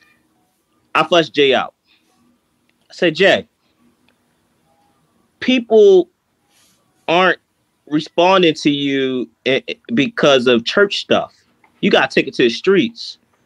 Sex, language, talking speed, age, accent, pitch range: male, English, 105 wpm, 30-49, American, 125-170 Hz